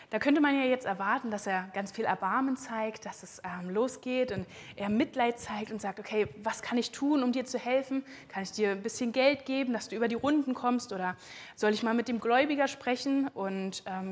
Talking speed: 230 wpm